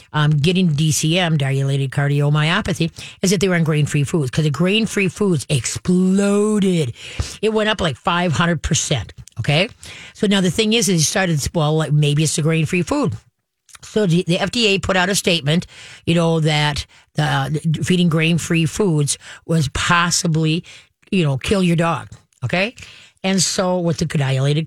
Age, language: 50-69, English